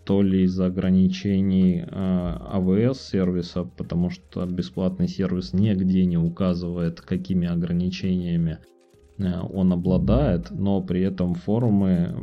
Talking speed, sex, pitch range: 115 wpm, male, 90-100 Hz